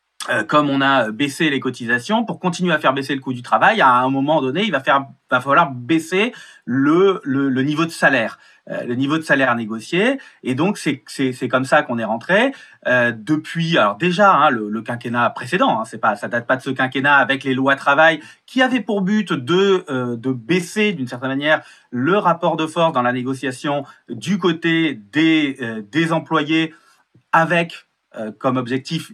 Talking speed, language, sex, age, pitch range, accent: 200 wpm, French, male, 30-49, 130-175 Hz, French